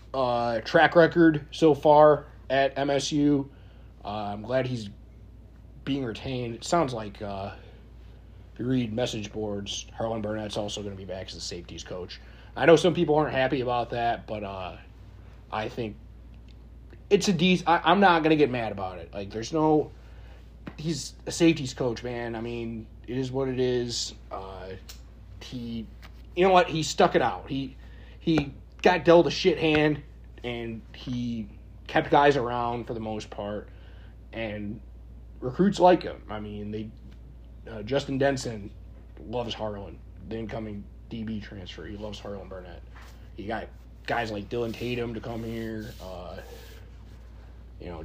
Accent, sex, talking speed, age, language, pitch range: American, male, 165 wpm, 20-39, English, 105-145 Hz